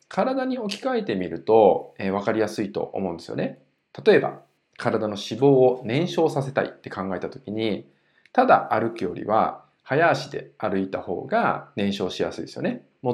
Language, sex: Japanese, male